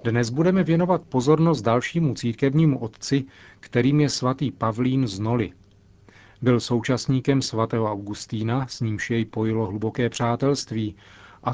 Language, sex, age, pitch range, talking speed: Czech, male, 40-59, 105-135 Hz, 125 wpm